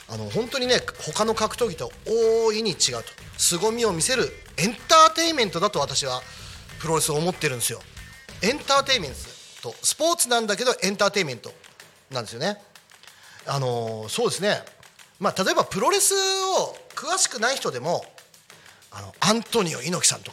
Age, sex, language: 40-59, male, Japanese